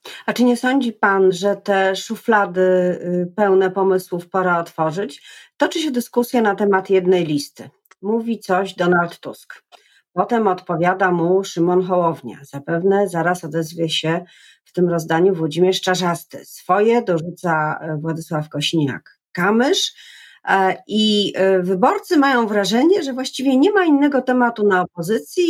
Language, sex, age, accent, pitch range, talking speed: Polish, female, 40-59, native, 175-225 Hz, 125 wpm